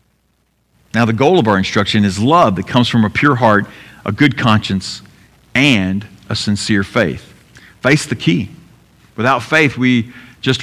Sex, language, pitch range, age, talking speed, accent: male, English, 110-145 Hz, 50-69, 160 wpm, American